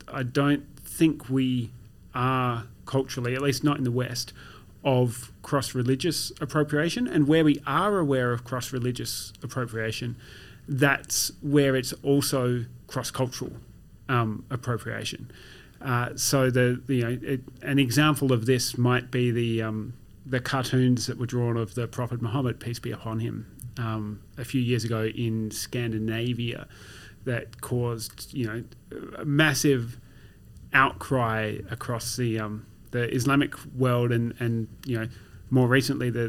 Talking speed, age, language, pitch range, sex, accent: 140 wpm, 30-49, English, 115-140 Hz, male, Australian